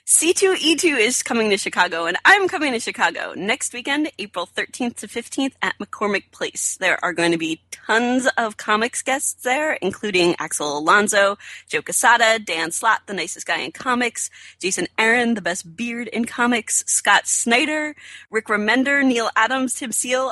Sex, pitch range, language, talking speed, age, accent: female, 210-265 Hz, English, 165 wpm, 30-49, American